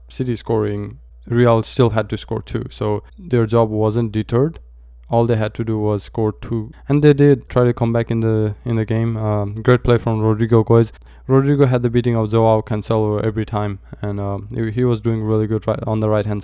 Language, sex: English, male